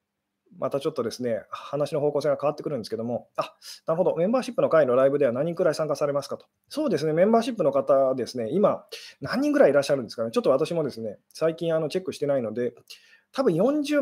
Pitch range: 140-210 Hz